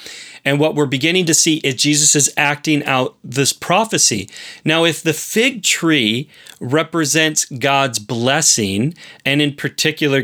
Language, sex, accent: English, male, American